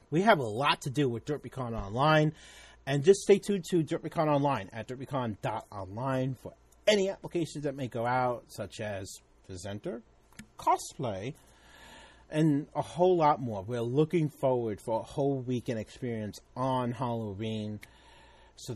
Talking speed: 145 wpm